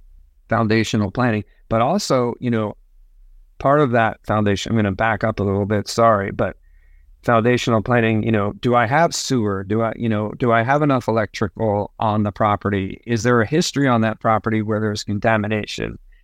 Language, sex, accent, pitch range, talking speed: English, male, American, 105-120 Hz, 185 wpm